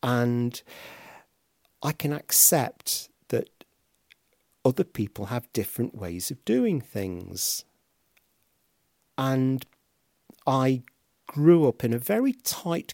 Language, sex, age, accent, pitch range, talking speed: English, male, 50-69, British, 95-120 Hz, 95 wpm